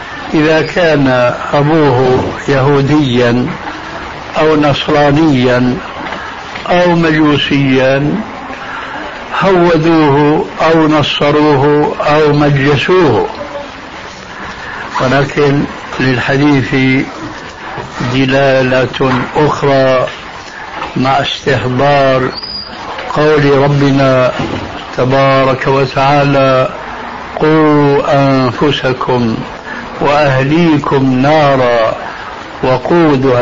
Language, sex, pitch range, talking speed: Arabic, male, 135-155 Hz, 50 wpm